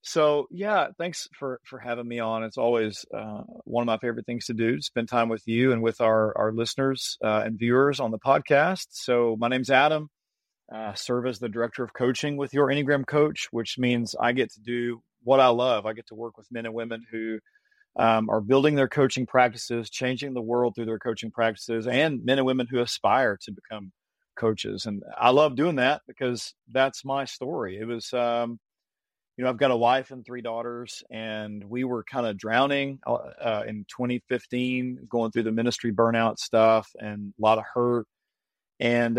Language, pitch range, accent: English, 110-125 Hz, American